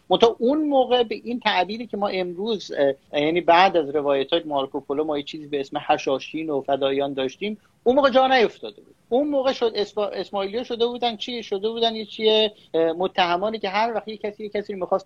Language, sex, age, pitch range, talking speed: Persian, male, 40-59, 160-220 Hz, 190 wpm